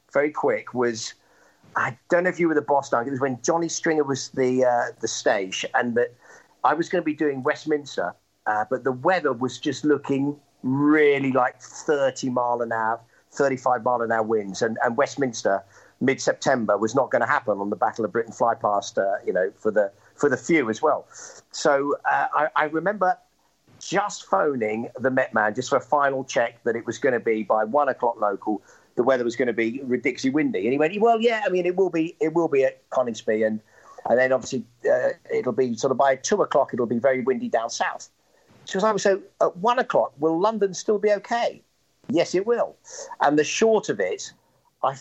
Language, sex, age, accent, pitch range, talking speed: English, male, 50-69, British, 125-180 Hz, 215 wpm